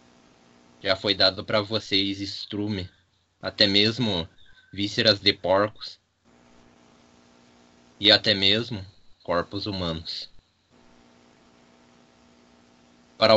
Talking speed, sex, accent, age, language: 75 wpm, male, Brazilian, 20-39, Portuguese